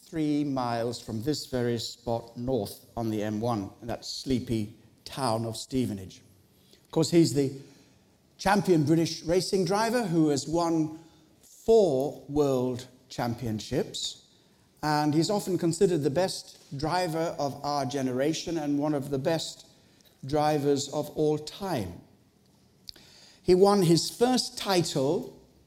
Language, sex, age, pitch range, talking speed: English, male, 60-79, 125-170 Hz, 125 wpm